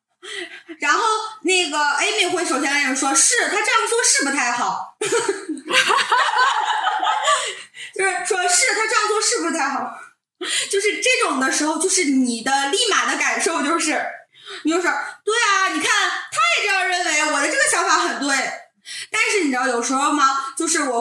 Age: 20-39